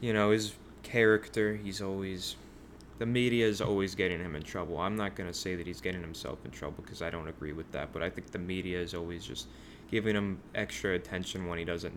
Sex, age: male, 20-39